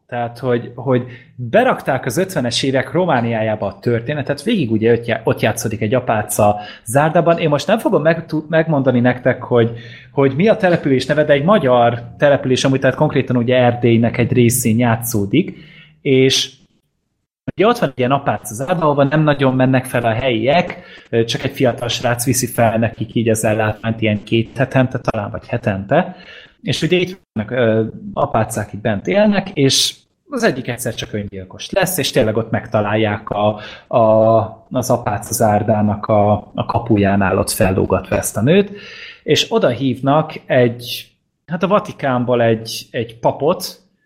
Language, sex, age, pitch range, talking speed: Hungarian, male, 30-49, 115-140 Hz, 155 wpm